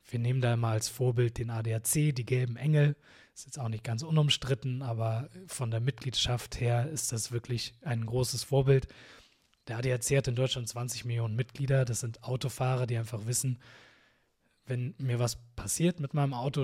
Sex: male